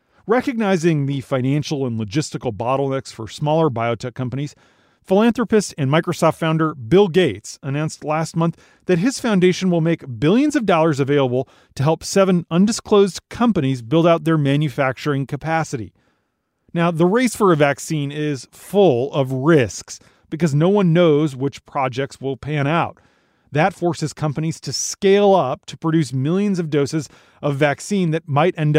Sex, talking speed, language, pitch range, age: male, 150 wpm, English, 135-175 Hz, 40-59